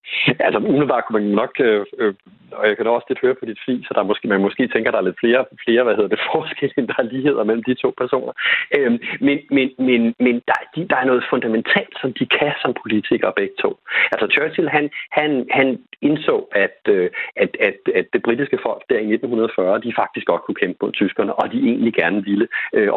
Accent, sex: native, male